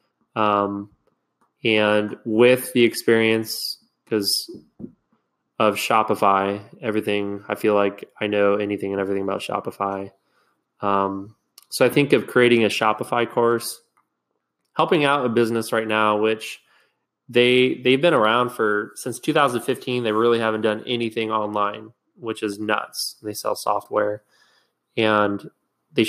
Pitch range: 105-120 Hz